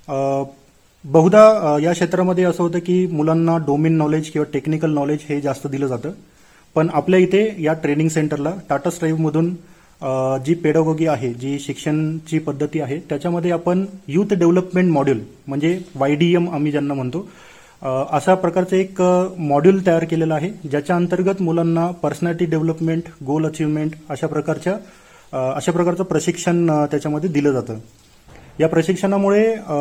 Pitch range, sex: 145-175 Hz, male